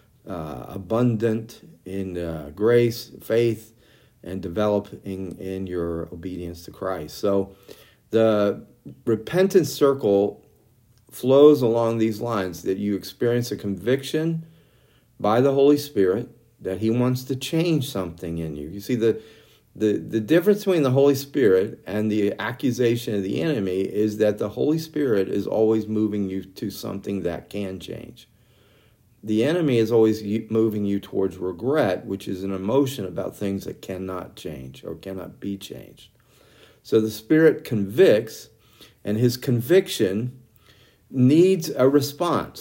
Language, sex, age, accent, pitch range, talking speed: English, male, 50-69, American, 100-125 Hz, 140 wpm